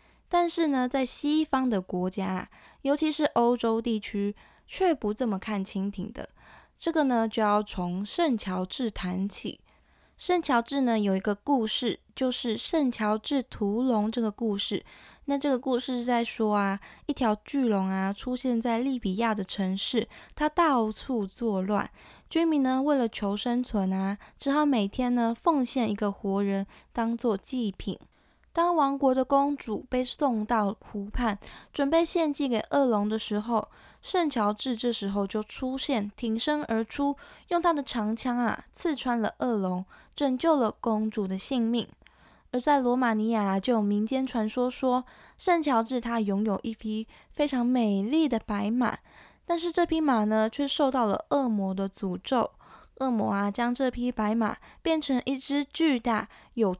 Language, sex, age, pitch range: Chinese, female, 20-39, 210-275 Hz